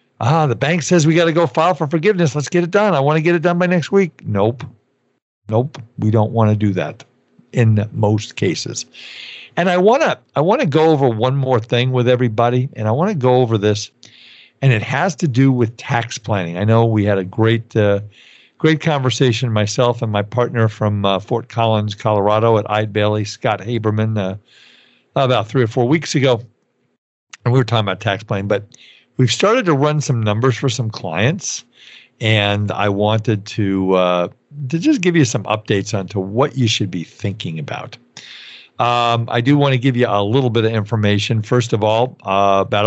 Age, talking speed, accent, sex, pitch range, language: 50-69, 205 wpm, American, male, 105-130 Hz, English